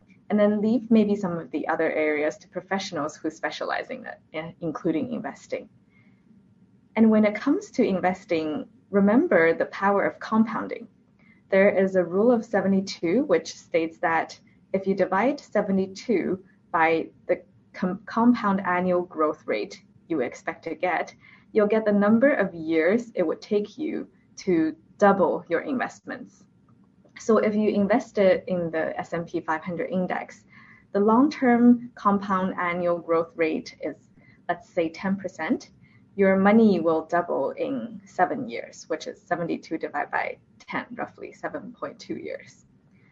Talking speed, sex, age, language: 140 wpm, female, 20-39, English